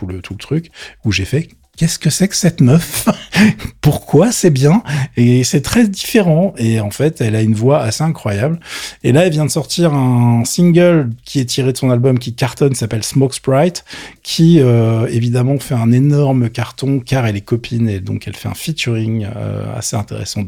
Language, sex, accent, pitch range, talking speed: French, male, French, 105-130 Hz, 195 wpm